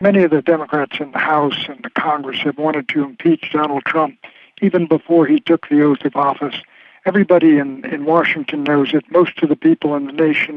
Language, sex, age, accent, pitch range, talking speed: English, male, 60-79, American, 155-185 Hz, 210 wpm